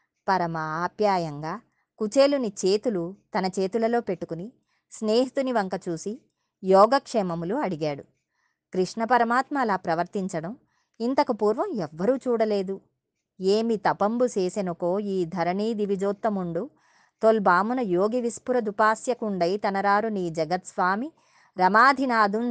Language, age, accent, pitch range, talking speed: Telugu, 20-39, native, 180-235 Hz, 90 wpm